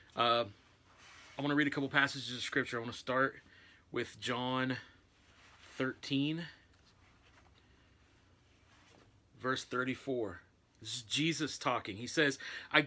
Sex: male